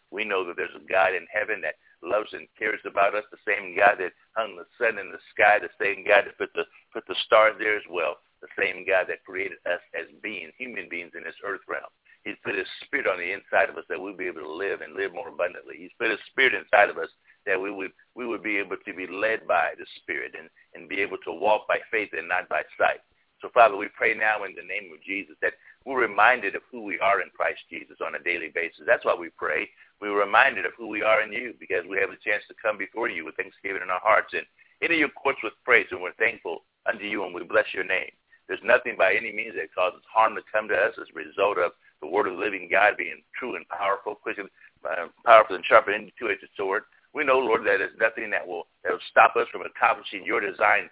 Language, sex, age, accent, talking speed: English, male, 60-79, American, 255 wpm